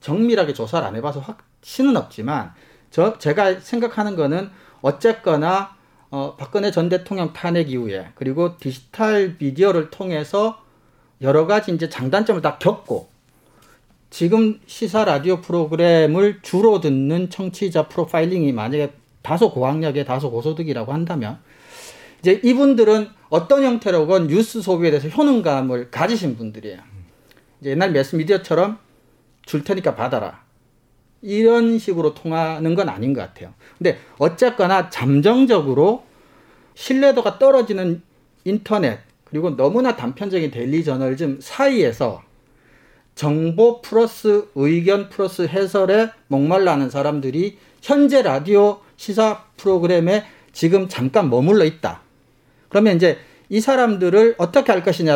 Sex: male